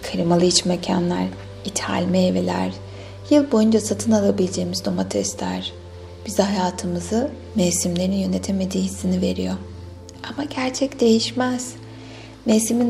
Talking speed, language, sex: 95 wpm, Turkish, female